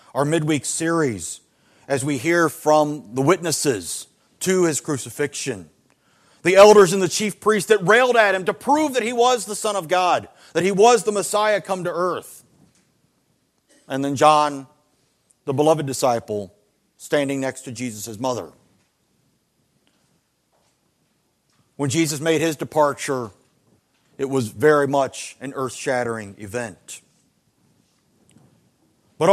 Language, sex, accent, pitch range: English, male, American, 145-195 Hz